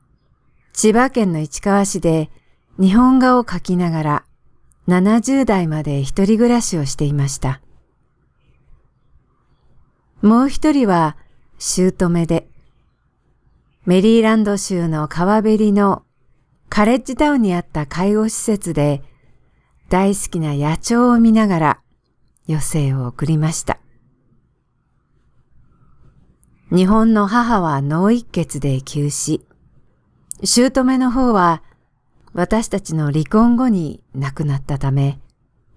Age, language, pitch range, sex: 50-69, English, 145-215 Hz, female